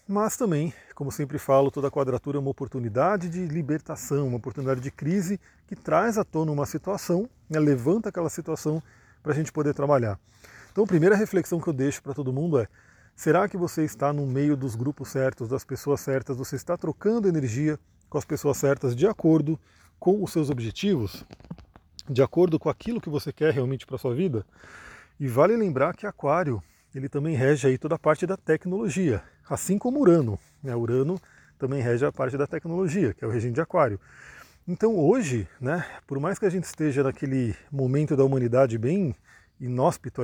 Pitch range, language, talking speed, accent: 130-170 Hz, Portuguese, 185 wpm, Brazilian